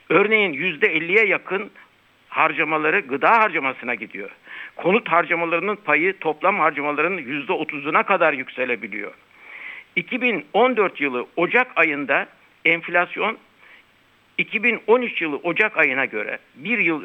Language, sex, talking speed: Turkish, male, 100 wpm